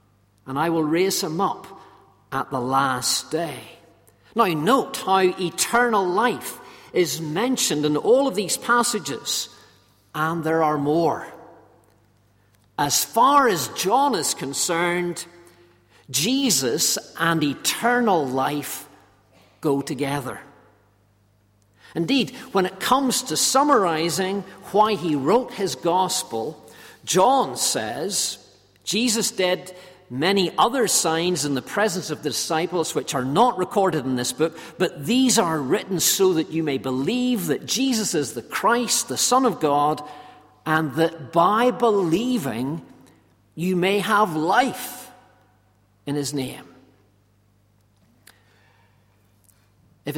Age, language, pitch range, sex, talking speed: 50-69, English, 115-190 Hz, male, 120 wpm